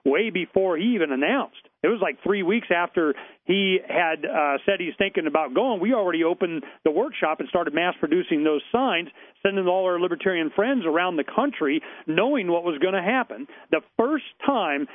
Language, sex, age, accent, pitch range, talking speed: English, male, 40-59, American, 165-225 Hz, 185 wpm